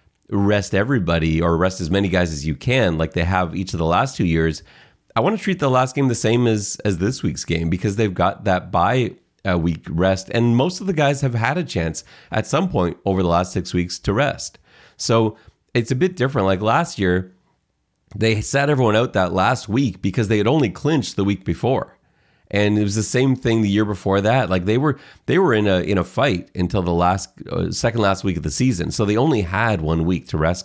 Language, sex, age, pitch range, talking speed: English, male, 30-49, 85-110 Hz, 235 wpm